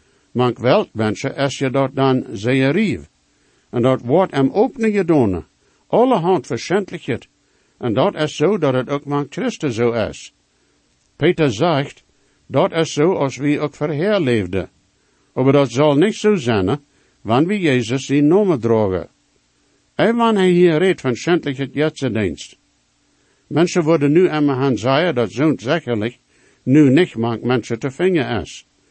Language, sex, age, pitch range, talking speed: English, male, 60-79, 120-175 Hz, 155 wpm